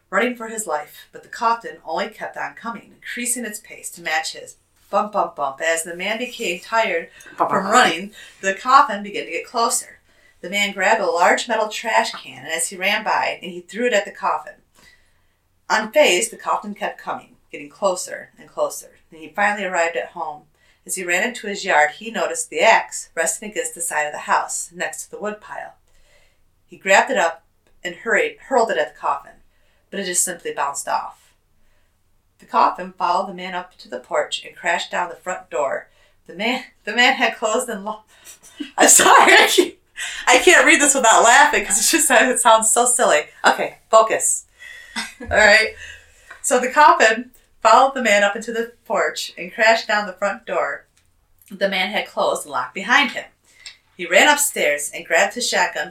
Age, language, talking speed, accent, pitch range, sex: 40-59, English, 190 wpm, American, 170-245 Hz, female